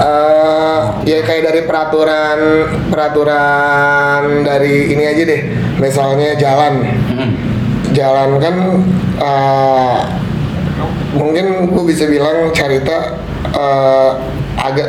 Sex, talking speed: male, 90 wpm